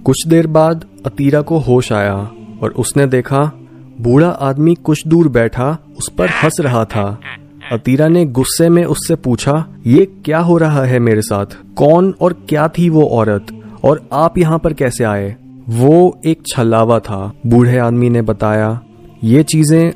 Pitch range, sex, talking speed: 115-160 Hz, male, 165 wpm